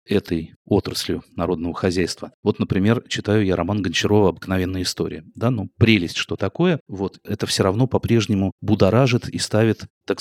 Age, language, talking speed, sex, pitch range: 30-49, Russian, 155 wpm, male, 90-110 Hz